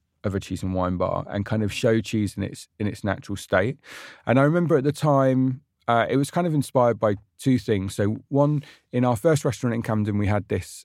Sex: male